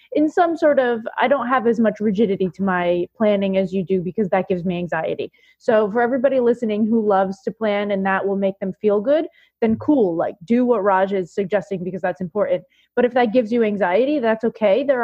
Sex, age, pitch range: female, 20-39, 185-220 Hz